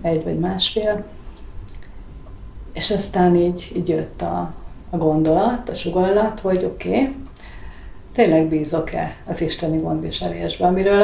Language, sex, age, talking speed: Hungarian, female, 40-59, 120 wpm